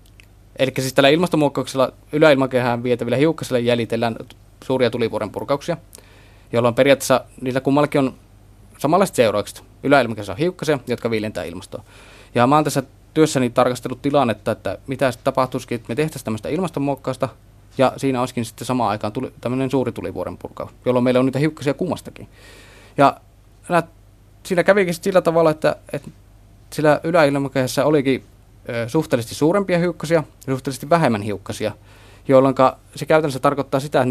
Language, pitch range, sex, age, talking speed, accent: Finnish, 105-140 Hz, male, 30-49, 135 wpm, native